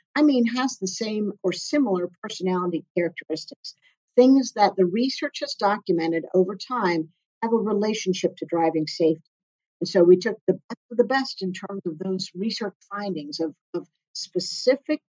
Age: 50-69